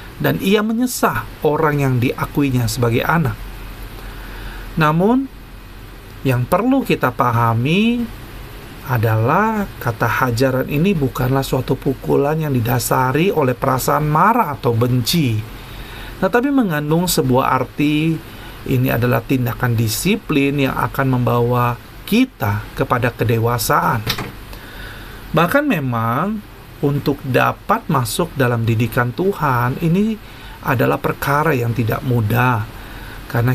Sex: male